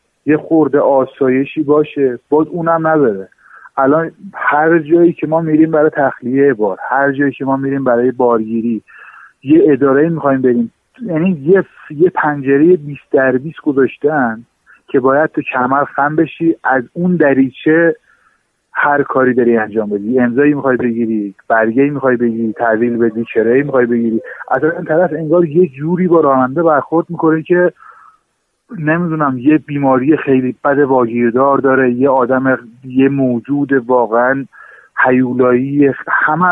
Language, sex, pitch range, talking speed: Persian, male, 130-160 Hz, 140 wpm